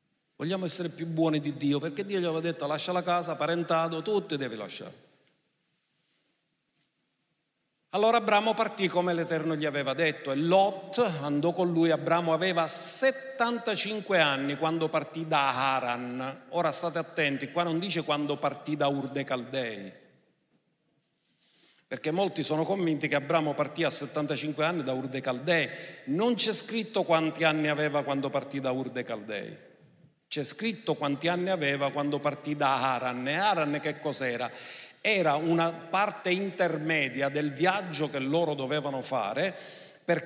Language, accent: Italian, native